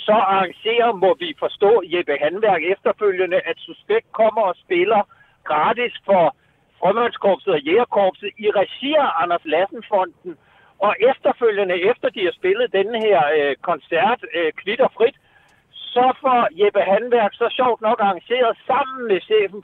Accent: native